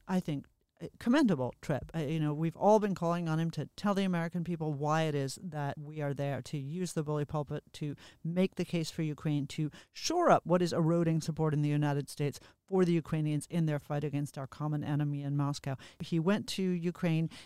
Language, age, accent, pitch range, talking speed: English, 40-59, American, 155-185 Hz, 215 wpm